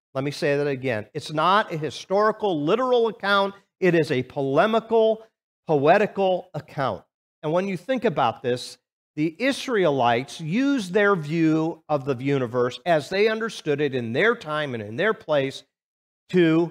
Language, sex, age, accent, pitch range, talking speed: English, male, 50-69, American, 135-190 Hz, 155 wpm